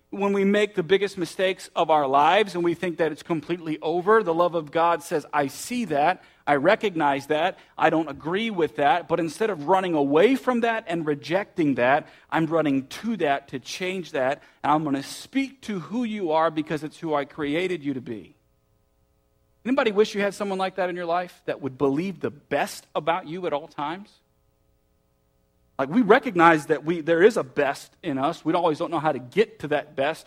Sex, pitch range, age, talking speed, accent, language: male, 150-210 Hz, 40-59, 215 wpm, American, English